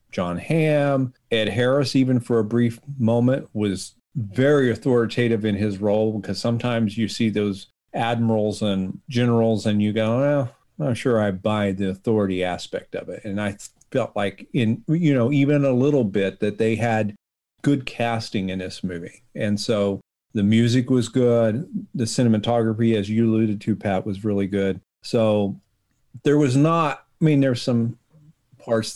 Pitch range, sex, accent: 105-135 Hz, male, American